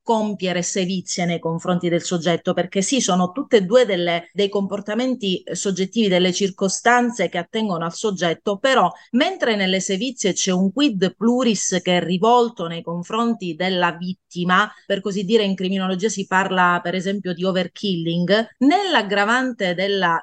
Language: Italian